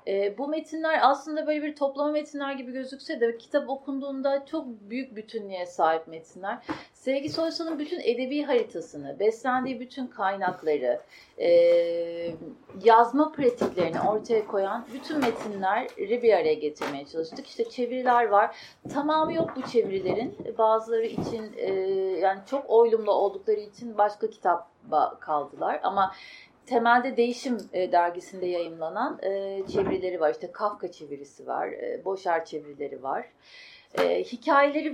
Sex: female